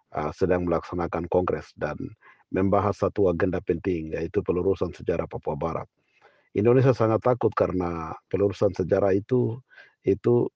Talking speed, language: 120 wpm, Malay